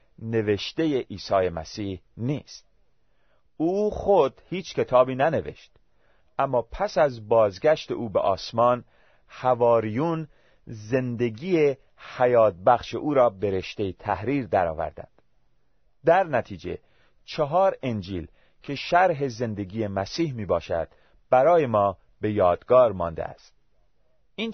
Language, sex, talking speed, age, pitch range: Persian, male, 105 wpm, 40-59, 105-140 Hz